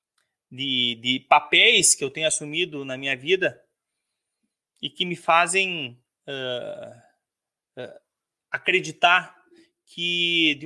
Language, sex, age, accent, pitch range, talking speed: Portuguese, male, 30-49, Brazilian, 135-180 Hz, 105 wpm